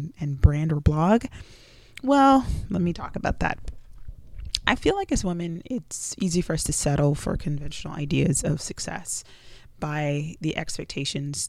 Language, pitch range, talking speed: English, 145-180 Hz, 150 wpm